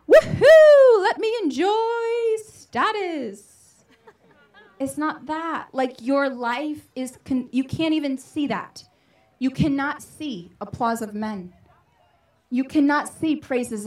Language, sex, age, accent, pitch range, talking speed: English, female, 20-39, American, 235-300 Hz, 120 wpm